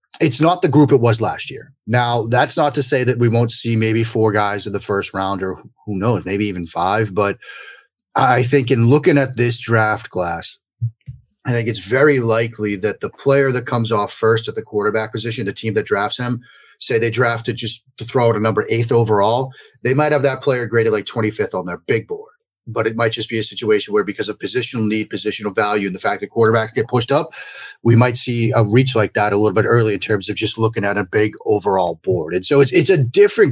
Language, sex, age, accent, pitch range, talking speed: English, male, 30-49, American, 110-135 Hz, 235 wpm